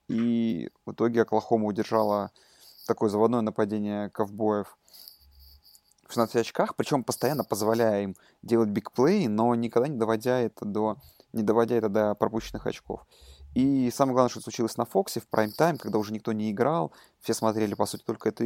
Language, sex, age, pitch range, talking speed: Russian, male, 20-39, 105-115 Hz, 155 wpm